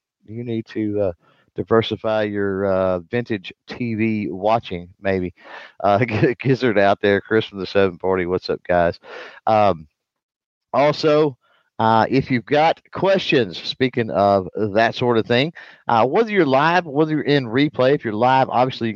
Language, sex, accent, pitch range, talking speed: English, male, American, 100-130 Hz, 150 wpm